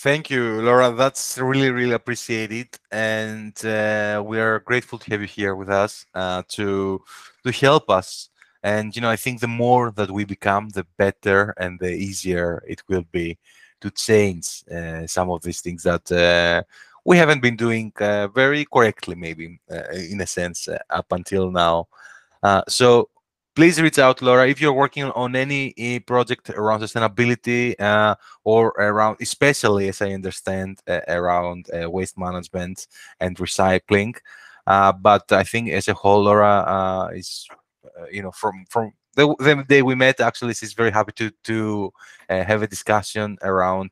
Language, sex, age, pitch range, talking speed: Greek, male, 20-39, 95-120 Hz, 170 wpm